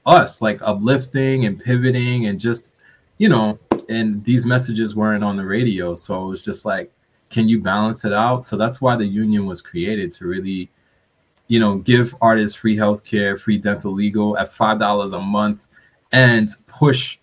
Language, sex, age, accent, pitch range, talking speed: English, male, 20-39, American, 100-120 Hz, 180 wpm